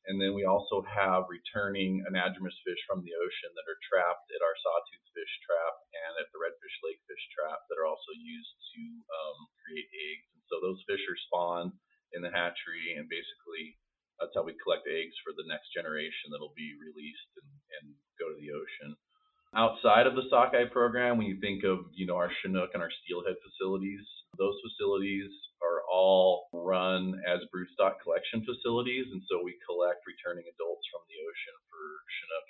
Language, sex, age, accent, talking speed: English, male, 30-49, American, 185 wpm